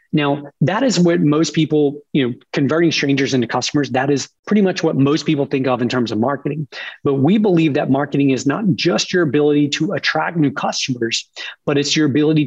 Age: 30-49